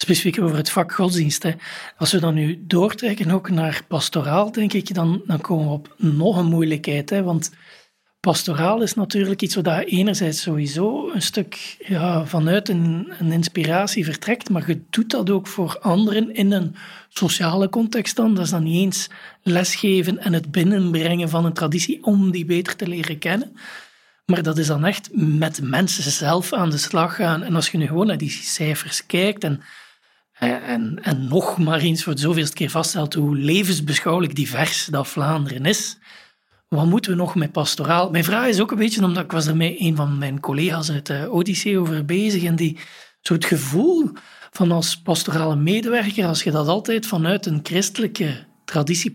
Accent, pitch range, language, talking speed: Dutch, 160-195 Hz, Dutch, 185 wpm